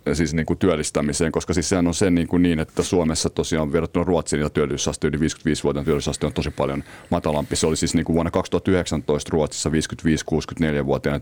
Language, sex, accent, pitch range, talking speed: Finnish, male, native, 80-105 Hz, 170 wpm